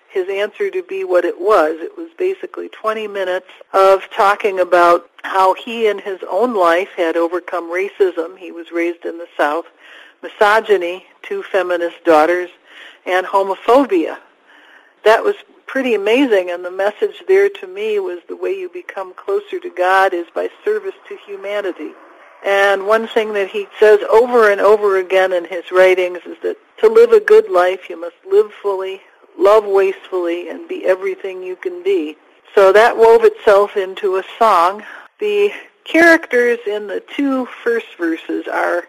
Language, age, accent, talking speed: English, 60-79, American, 165 wpm